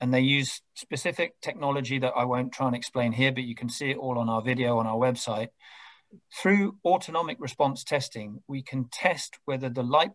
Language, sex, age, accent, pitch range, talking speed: English, male, 40-59, British, 120-140 Hz, 200 wpm